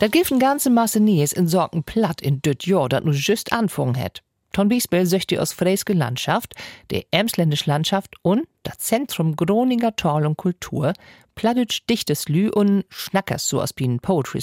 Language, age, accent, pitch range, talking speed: German, 50-69, German, 145-215 Hz, 175 wpm